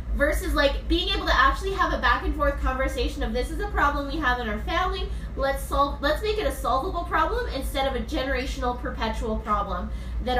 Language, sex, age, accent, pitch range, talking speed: English, female, 10-29, American, 245-330 Hz, 215 wpm